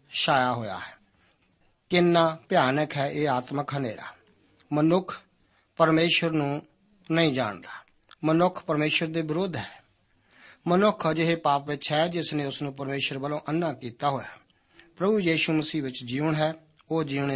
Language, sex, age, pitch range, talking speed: Punjabi, male, 50-69, 130-165 Hz, 140 wpm